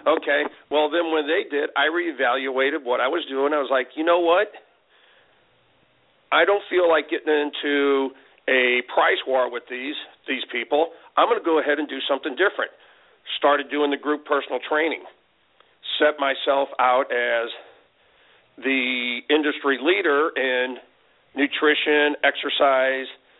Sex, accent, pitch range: male, American, 130-150 Hz